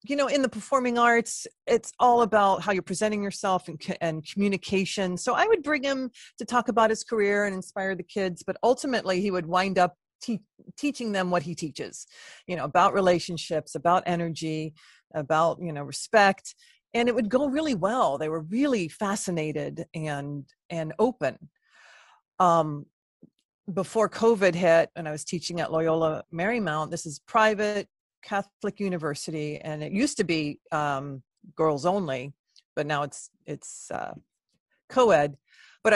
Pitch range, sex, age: 160-215 Hz, female, 40-59